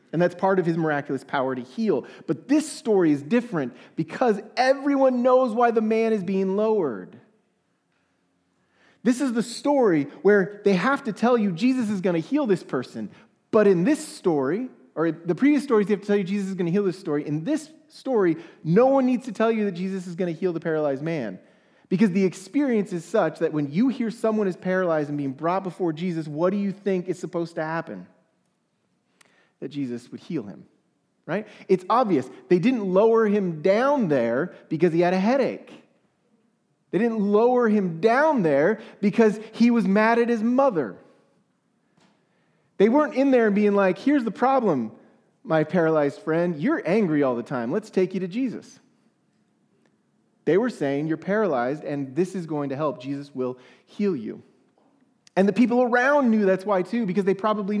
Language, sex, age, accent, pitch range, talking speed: English, male, 30-49, American, 165-235 Hz, 190 wpm